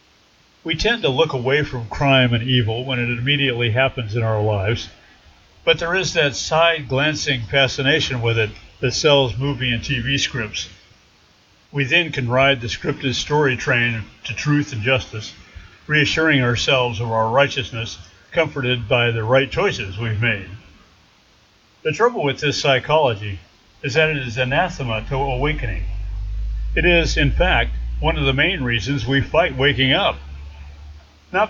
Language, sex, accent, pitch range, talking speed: English, male, American, 110-145 Hz, 150 wpm